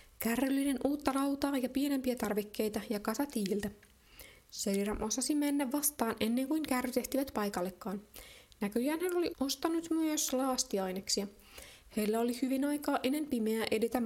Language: Finnish